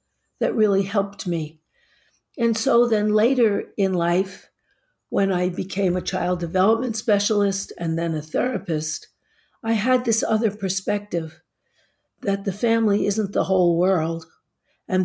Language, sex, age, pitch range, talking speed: English, female, 60-79, 180-215 Hz, 135 wpm